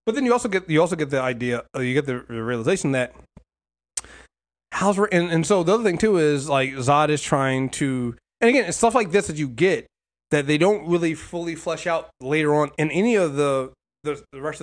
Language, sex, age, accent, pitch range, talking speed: English, male, 30-49, American, 125-165 Hz, 220 wpm